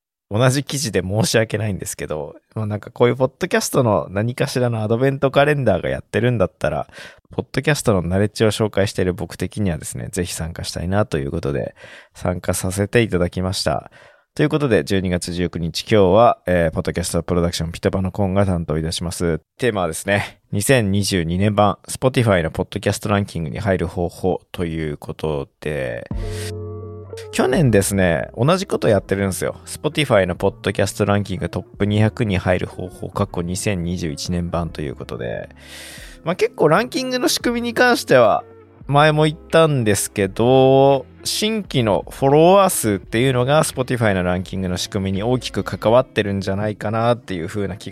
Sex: male